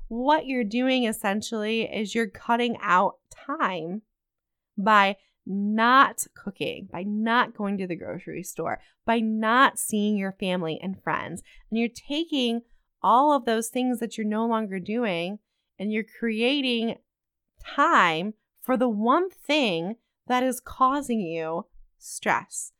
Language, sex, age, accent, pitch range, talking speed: English, female, 30-49, American, 200-245 Hz, 135 wpm